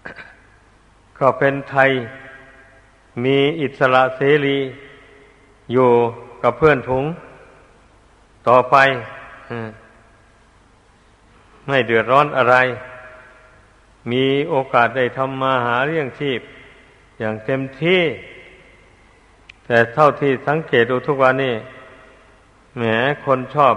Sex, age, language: male, 60-79, Thai